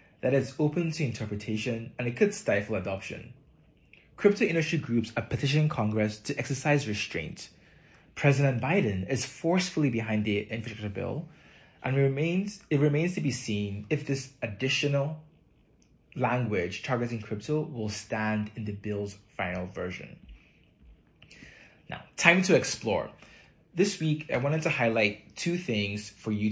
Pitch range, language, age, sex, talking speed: 105-150 Hz, English, 20-39, male, 140 wpm